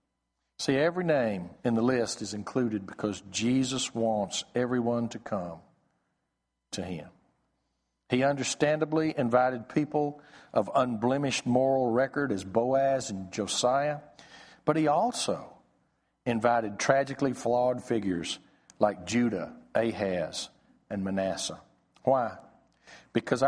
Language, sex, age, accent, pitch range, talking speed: English, male, 50-69, American, 105-135 Hz, 105 wpm